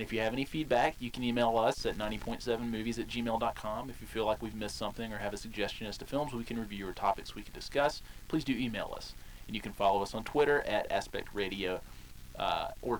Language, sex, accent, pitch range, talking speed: English, male, American, 105-130 Hz, 235 wpm